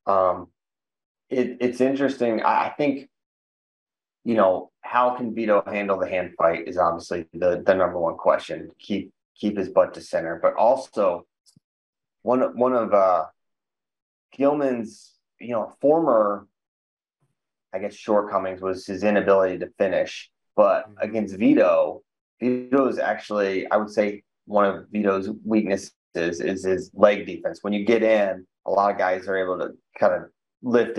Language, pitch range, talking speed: English, 95-110 Hz, 150 wpm